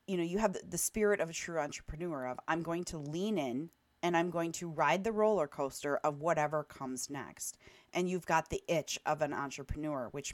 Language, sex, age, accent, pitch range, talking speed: English, female, 30-49, American, 150-195 Hz, 215 wpm